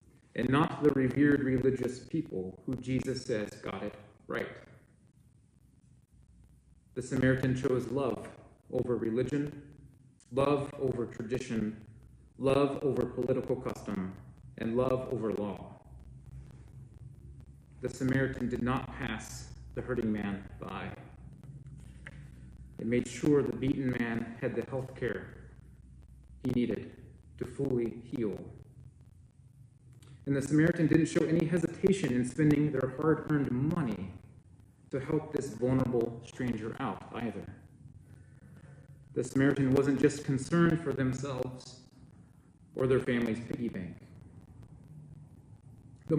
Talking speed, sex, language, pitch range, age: 110 wpm, male, English, 115-135 Hz, 30-49